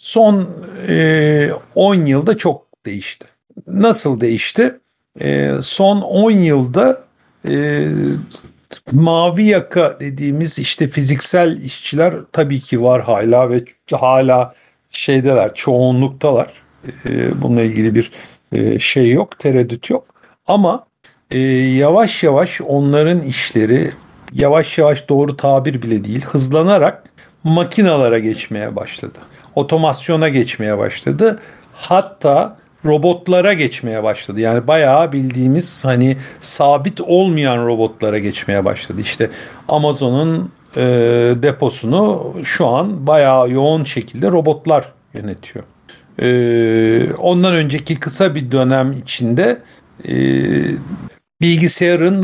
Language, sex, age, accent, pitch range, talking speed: Turkish, male, 60-79, native, 120-165 Hz, 100 wpm